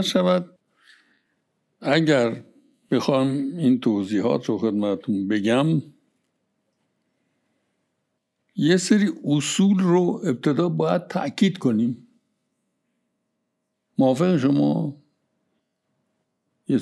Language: Persian